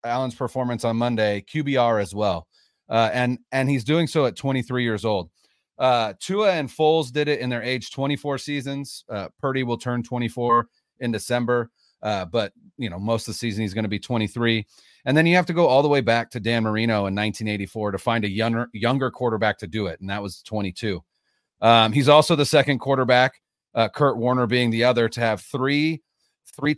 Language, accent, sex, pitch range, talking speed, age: English, American, male, 115-145 Hz, 205 wpm, 30-49